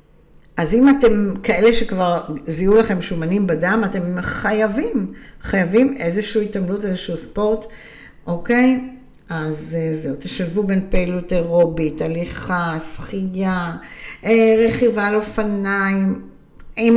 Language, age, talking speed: Hebrew, 50-69, 105 wpm